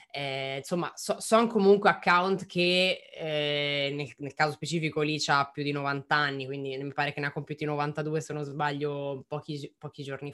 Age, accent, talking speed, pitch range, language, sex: 20-39, native, 180 wpm, 150-185 Hz, Italian, female